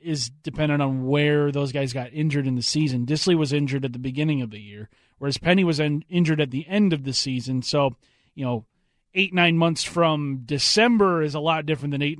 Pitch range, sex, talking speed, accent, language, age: 135-175 Hz, male, 215 wpm, American, English, 30-49